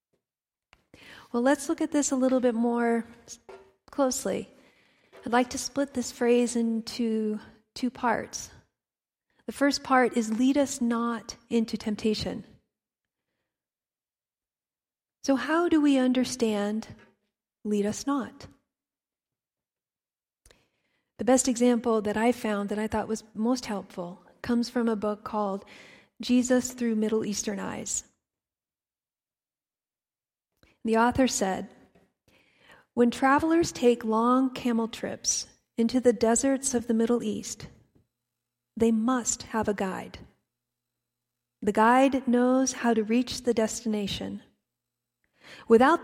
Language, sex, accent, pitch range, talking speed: English, female, American, 210-255 Hz, 115 wpm